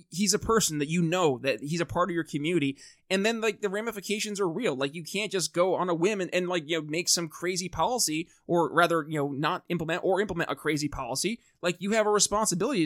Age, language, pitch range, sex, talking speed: 20-39, English, 155-195 Hz, male, 245 wpm